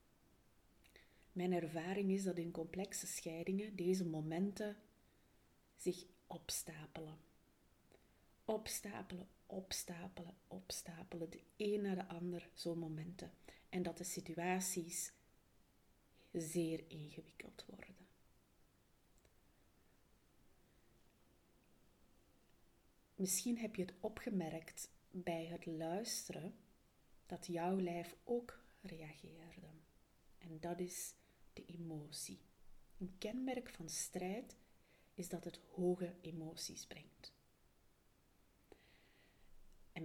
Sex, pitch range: female, 160-190 Hz